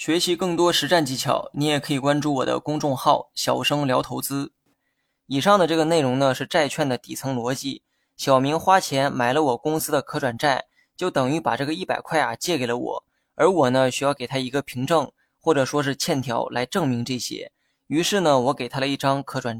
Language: Chinese